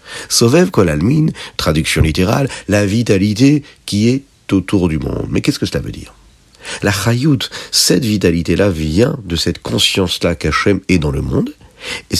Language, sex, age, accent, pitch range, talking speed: French, male, 50-69, French, 80-110 Hz, 150 wpm